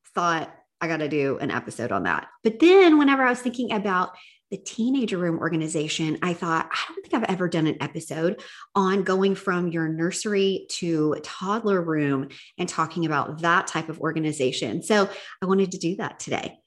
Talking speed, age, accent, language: 190 wpm, 40-59, American, English